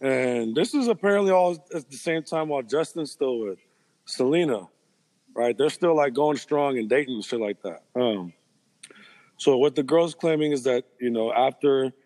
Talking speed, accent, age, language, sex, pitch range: 185 wpm, American, 20-39, English, male, 120-150 Hz